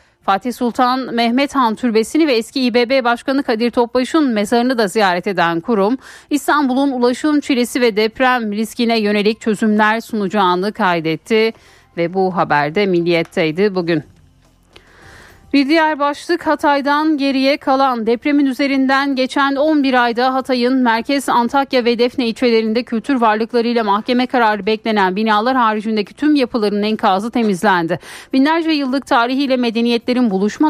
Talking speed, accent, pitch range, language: 125 wpm, native, 205-265 Hz, Turkish